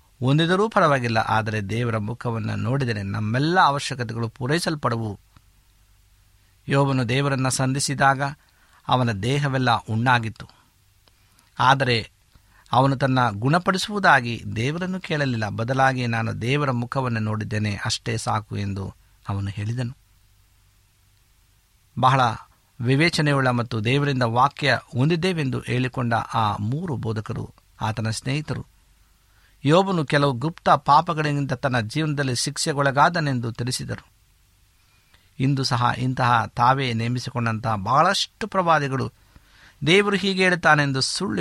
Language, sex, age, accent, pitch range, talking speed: Kannada, male, 50-69, native, 105-140 Hz, 90 wpm